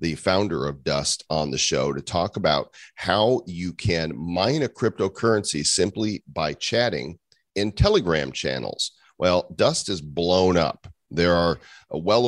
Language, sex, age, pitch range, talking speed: English, male, 40-59, 80-110 Hz, 145 wpm